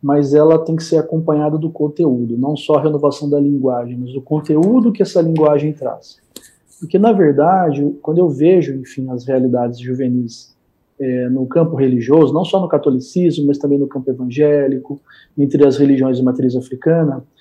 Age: 40-59